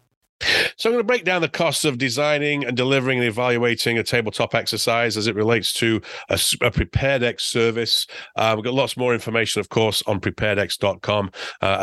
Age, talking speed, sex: 30-49, 185 wpm, male